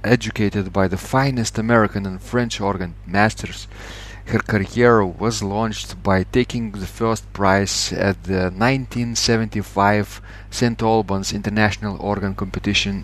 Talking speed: 120 wpm